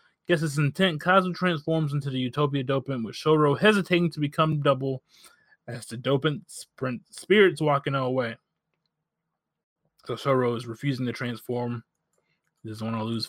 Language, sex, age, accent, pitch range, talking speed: English, male, 20-39, American, 130-165 Hz, 150 wpm